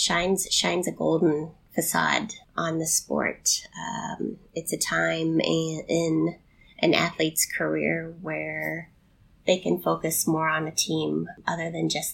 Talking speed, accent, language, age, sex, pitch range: 135 wpm, American, English, 20-39, female, 150-165 Hz